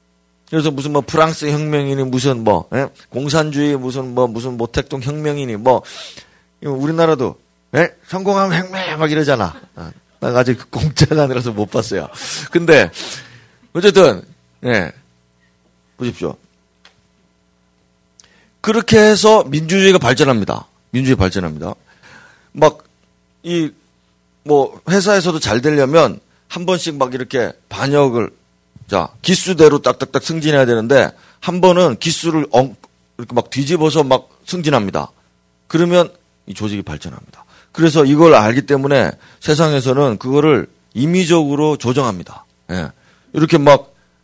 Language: Korean